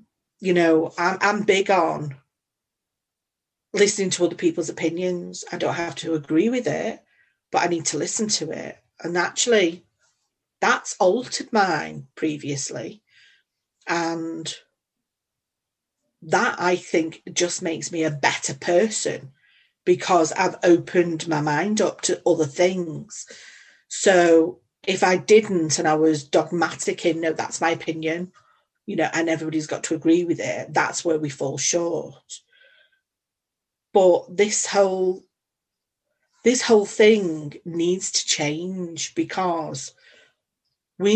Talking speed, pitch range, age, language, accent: 125 wpm, 160-200 Hz, 40-59, English, British